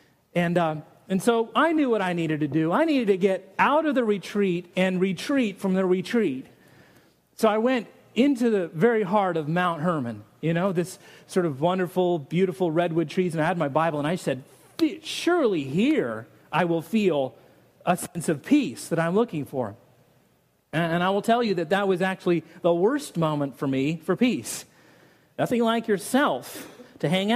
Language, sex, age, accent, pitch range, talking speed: English, male, 40-59, American, 160-205 Hz, 185 wpm